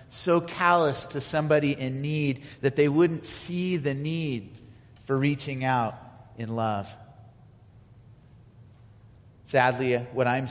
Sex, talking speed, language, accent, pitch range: male, 115 wpm, English, American, 115-140 Hz